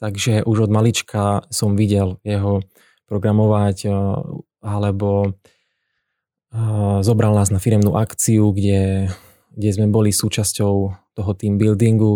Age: 20-39